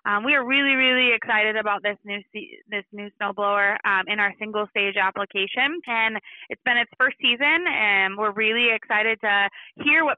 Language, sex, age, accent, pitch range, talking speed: English, female, 20-39, American, 200-235 Hz, 185 wpm